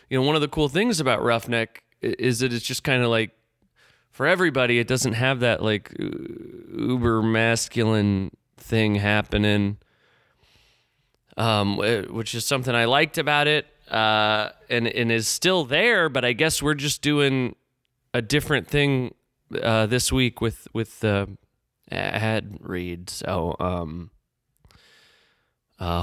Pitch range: 115-160 Hz